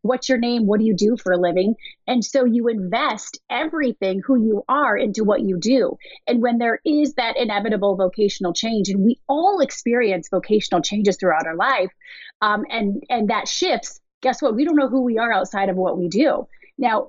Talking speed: 205 wpm